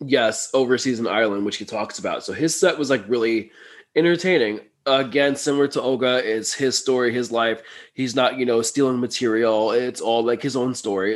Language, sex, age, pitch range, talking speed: English, male, 20-39, 115-140 Hz, 195 wpm